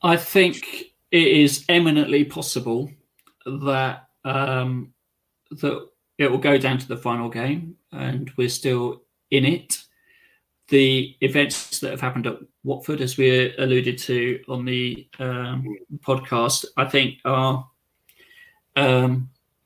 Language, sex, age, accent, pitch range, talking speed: English, male, 40-59, British, 125-140 Hz, 125 wpm